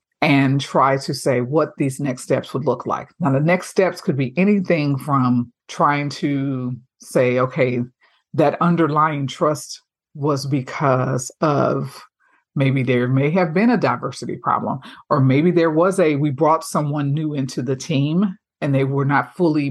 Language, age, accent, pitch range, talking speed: English, 50-69, American, 140-180 Hz, 165 wpm